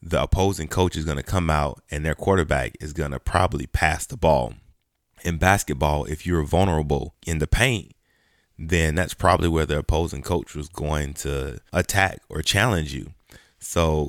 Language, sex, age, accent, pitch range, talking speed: English, male, 20-39, American, 75-85 Hz, 175 wpm